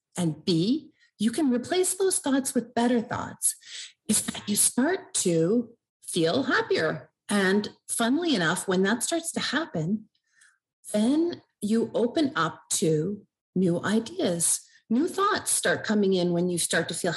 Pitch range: 180-255 Hz